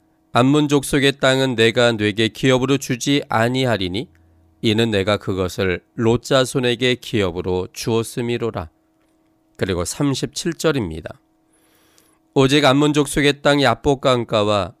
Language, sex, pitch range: Korean, male, 105-145 Hz